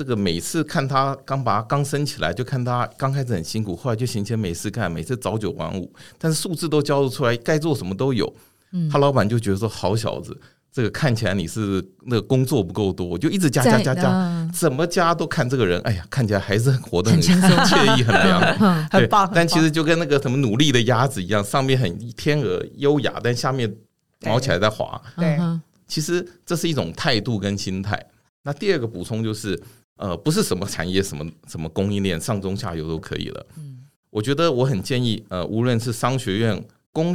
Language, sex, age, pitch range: Chinese, male, 50-69, 105-150 Hz